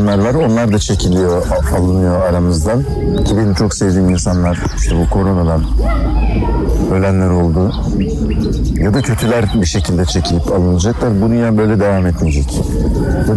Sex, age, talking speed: male, 60-79, 130 wpm